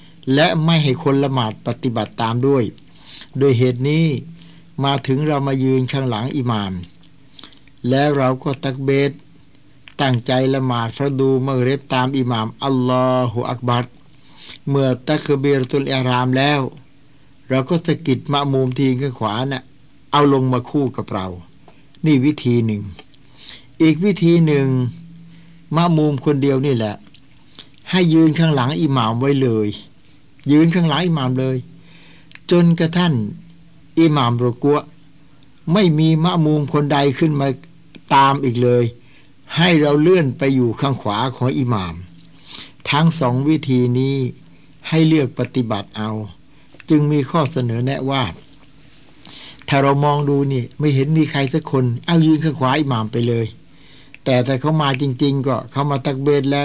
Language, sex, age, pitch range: Thai, male, 60-79, 125-150 Hz